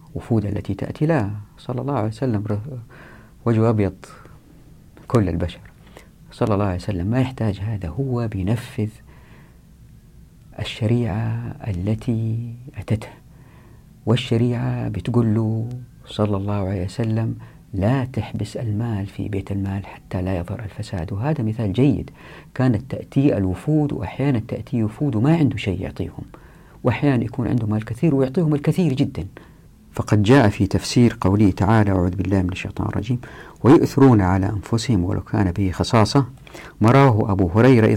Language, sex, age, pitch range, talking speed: Arabic, female, 50-69, 100-125 Hz, 135 wpm